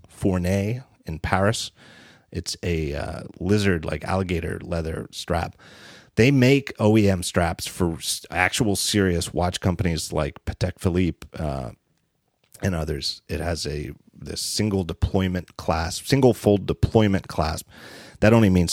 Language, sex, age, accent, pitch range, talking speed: English, male, 40-59, American, 85-110 Hz, 130 wpm